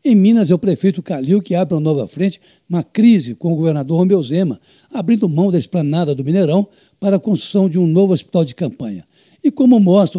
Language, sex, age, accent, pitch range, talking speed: Portuguese, male, 60-79, Brazilian, 160-205 Hz, 210 wpm